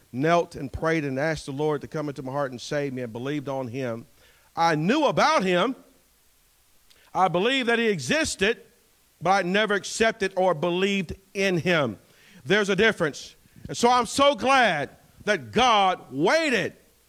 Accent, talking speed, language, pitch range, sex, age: American, 165 wpm, English, 150-205 Hz, male, 50-69